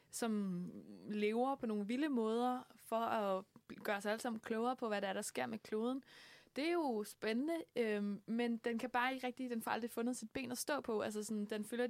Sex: female